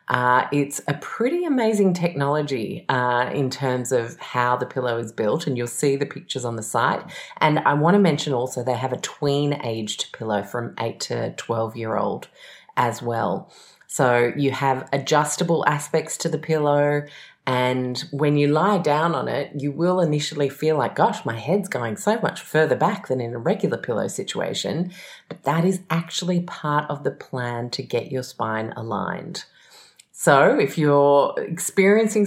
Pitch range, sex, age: 120-160 Hz, female, 30-49